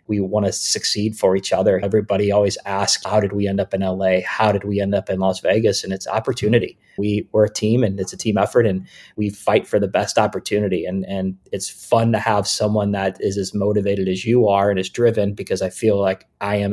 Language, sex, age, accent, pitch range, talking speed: English, male, 20-39, American, 100-110 Hz, 235 wpm